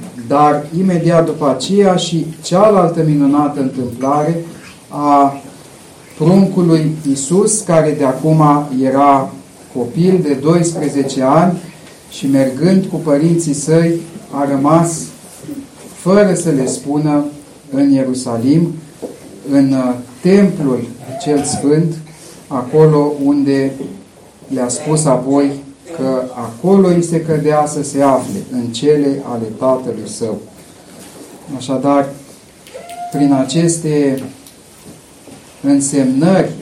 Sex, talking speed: male, 95 wpm